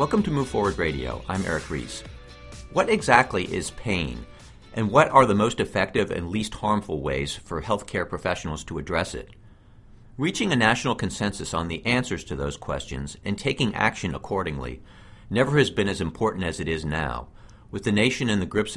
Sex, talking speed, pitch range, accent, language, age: male, 180 wpm, 80-110 Hz, American, English, 50-69